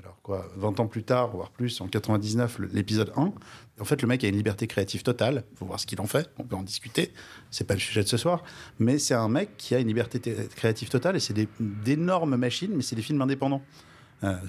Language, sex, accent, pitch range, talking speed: French, male, French, 100-125 Hz, 255 wpm